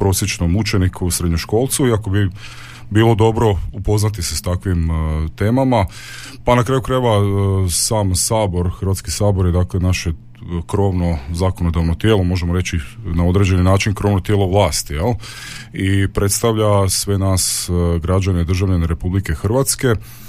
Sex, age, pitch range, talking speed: male, 30-49, 90-110 Hz, 140 wpm